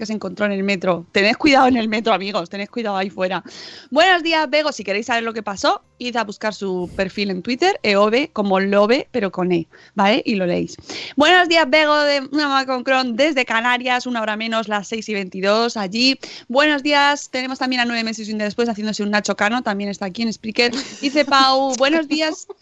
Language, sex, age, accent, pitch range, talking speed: Spanish, female, 20-39, Spanish, 210-285 Hz, 225 wpm